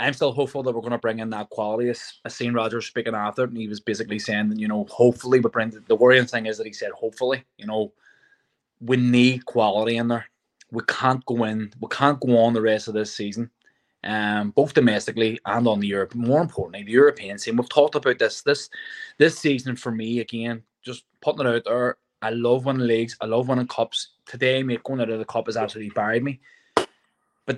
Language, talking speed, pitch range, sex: English, 225 wpm, 115-135 Hz, male